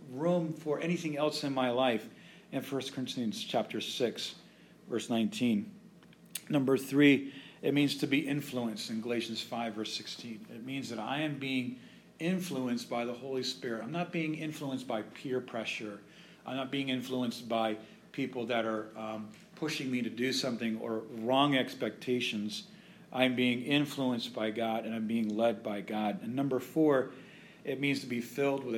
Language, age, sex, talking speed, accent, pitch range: English, 40-59, male, 170 wpm, American, 115-155 Hz